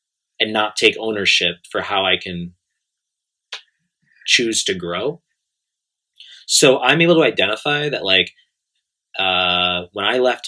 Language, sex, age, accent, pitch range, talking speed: English, male, 20-39, American, 90-130 Hz, 125 wpm